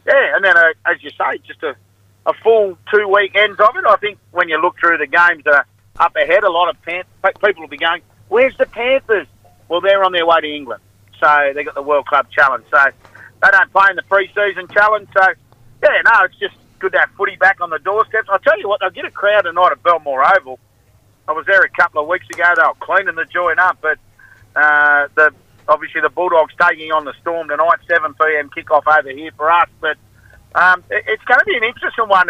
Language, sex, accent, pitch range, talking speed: English, male, Australian, 145-200 Hz, 235 wpm